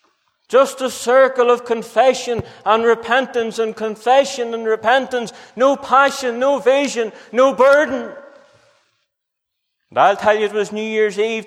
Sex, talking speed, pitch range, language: male, 135 wpm, 225-265 Hz, English